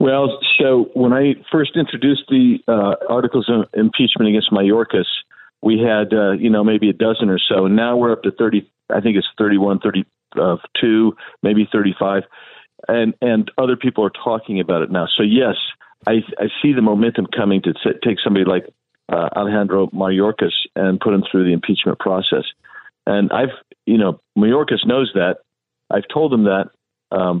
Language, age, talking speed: English, 50-69, 175 wpm